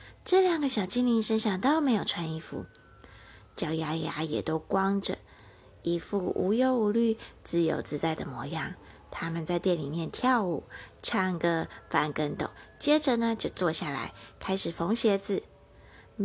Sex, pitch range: female, 155-225 Hz